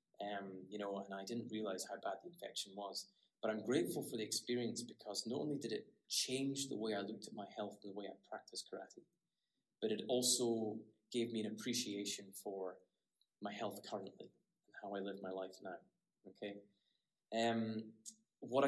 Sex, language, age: male, English, 20-39